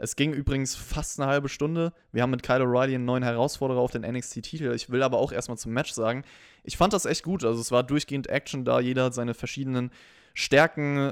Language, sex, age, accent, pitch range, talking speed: German, male, 20-39, German, 115-140 Hz, 225 wpm